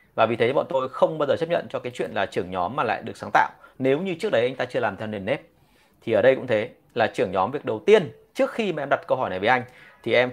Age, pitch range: 30-49, 125-180 Hz